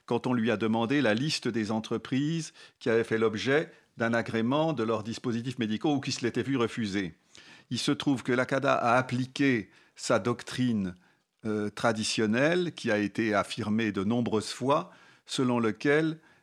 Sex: male